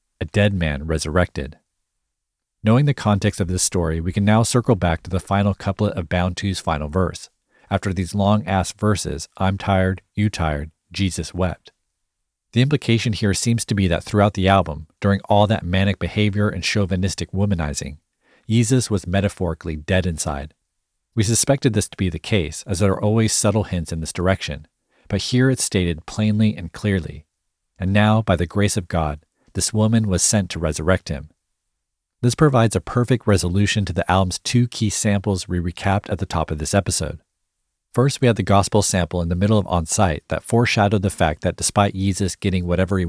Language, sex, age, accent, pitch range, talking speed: English, male, 40-59, American, 85-105 Hz, 185 wpm